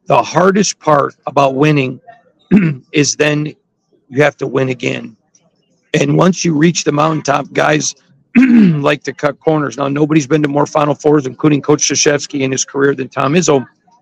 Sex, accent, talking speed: male, American, 165 wpm